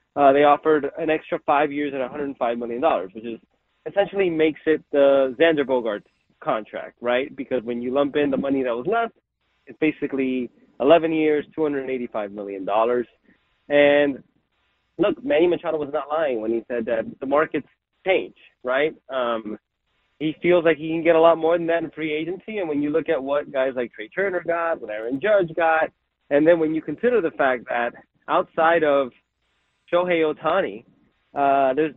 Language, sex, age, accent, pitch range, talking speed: English, male, 30-49, American, 140-170 Hz, 180 wpm